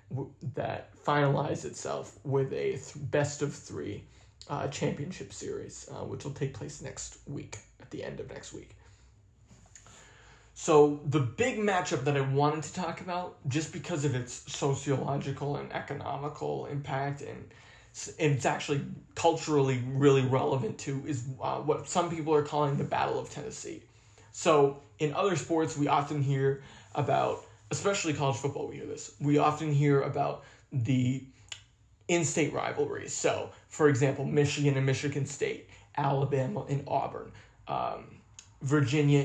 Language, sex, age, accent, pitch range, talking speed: English, male, 20-39, American, 130-150 Hz, 140 wpm